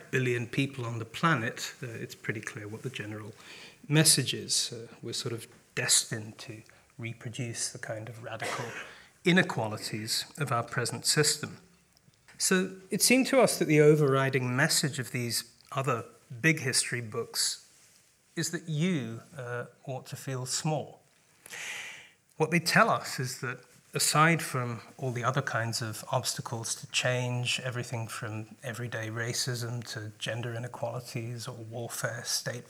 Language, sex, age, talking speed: English, male, 30-49, 145 wpm